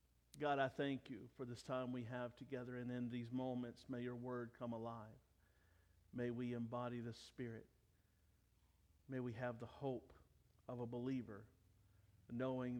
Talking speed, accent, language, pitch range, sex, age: 155 wpm, American, English, 115-180 Hz, male, 50-69